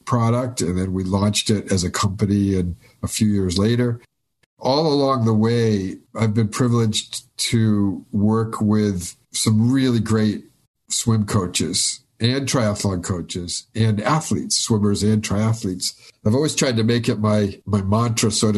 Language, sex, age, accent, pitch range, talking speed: English, male, 50-69, American, 100-120 Hz, 150 wpm